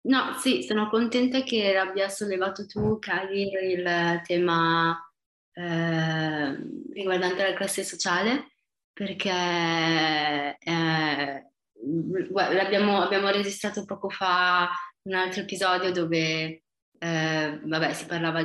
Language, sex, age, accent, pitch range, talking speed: Italian, female, 20-39, native, 165-195 Hz, 100 wpm